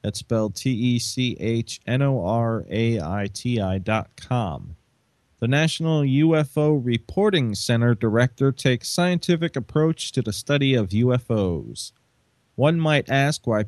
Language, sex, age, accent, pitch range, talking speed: English, male, 30-49, American, 115-140 Hz, 100 wpm